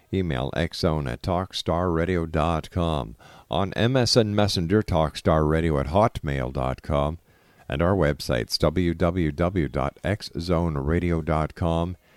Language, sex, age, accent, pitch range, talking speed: English, male, 50-69, American, 80-115 Hz, 70 wpm